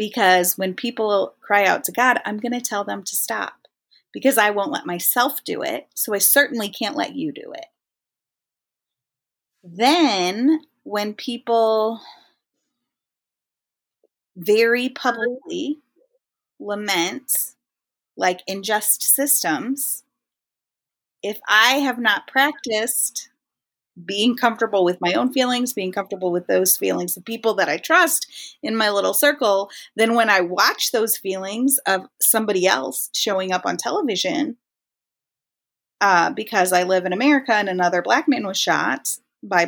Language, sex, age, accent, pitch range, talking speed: English, female, 30-49, American, 185-265 Hz, 135 wpm